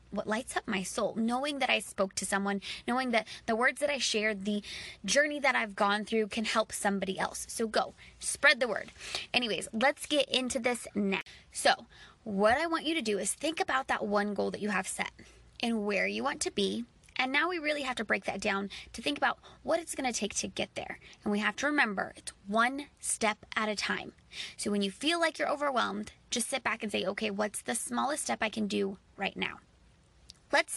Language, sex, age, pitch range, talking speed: English, female, 20-39, 205-270 Hz, 225 wpm